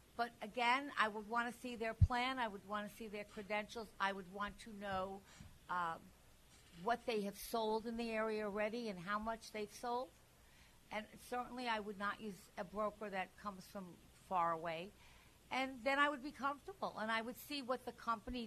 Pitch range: 200-245 Hz